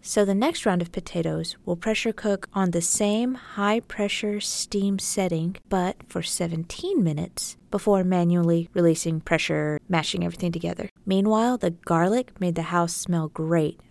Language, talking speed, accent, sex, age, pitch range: English, 145 wpm, American, female, 20-39, 170-215 Hz